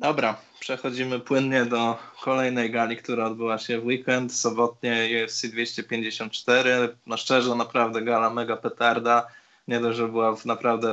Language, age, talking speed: Polish, 20-39, 145 wpm